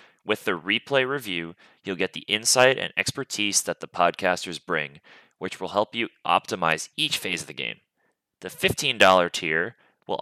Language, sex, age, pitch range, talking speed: English, male, 30-49, 90-125 Hz, 165 wpm